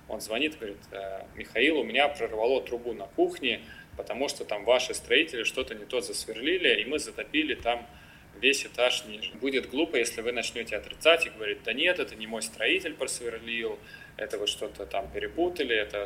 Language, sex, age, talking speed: Russian, male, 20-39, 175 wpm